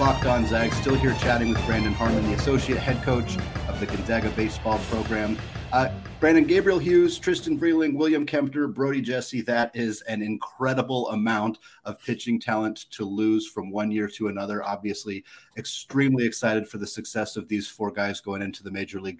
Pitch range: 105-130 Hz